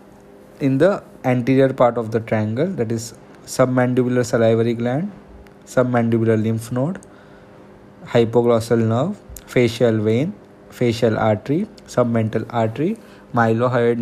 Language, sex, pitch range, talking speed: English, male, 110-135 Hz, 105 wpm